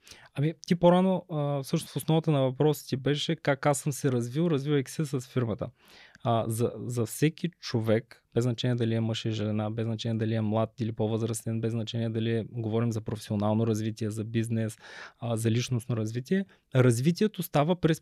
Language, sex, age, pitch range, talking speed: Bulgarian, male, 20-39, 115-150 Hz, 180 wpm